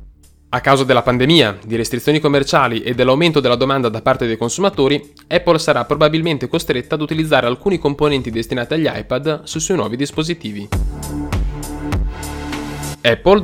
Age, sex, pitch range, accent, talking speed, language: 10-29, male, 120-160 Hz, native, 140 wpm, Italian